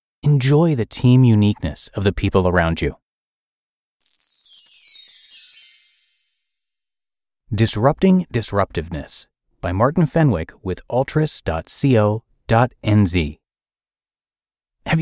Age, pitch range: 30-49, 90-125 Hz